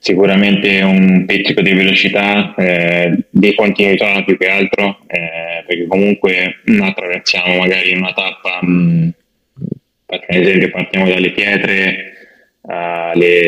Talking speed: 115 wpm